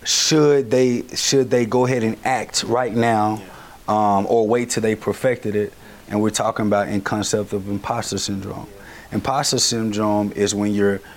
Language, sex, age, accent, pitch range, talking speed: English, male, 30-49, American, 105-140 Hz, 165 wpm